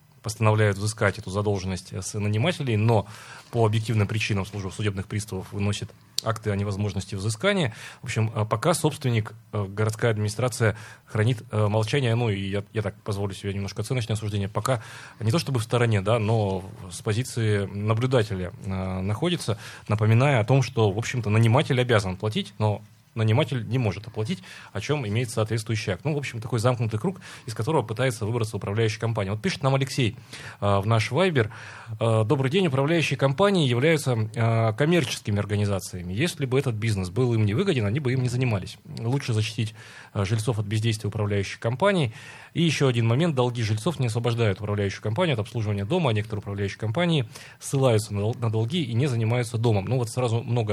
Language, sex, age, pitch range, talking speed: Russian, male, 20-39, 105-130 Hz, 165 wpm